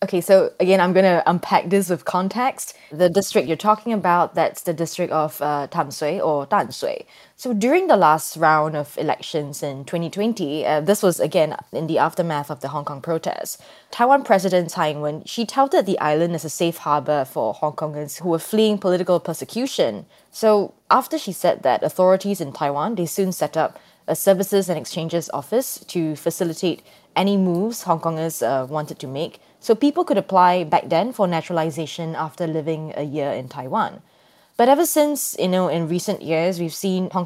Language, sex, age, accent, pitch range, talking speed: English, female, 20-39, Malaysian, 155-195 Hz, 185 wpm